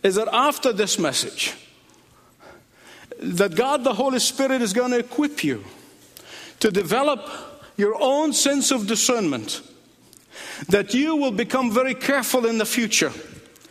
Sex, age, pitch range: male, 50-69, 225-275 Hz